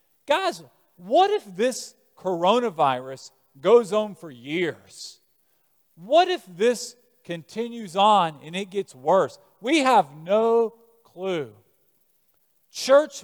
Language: English